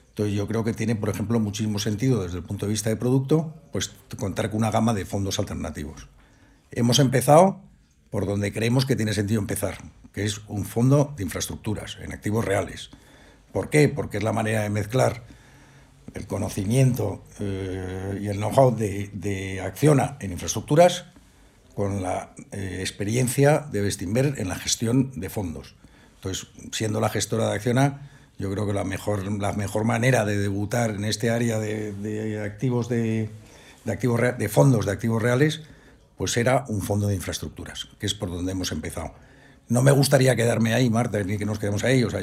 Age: 60-79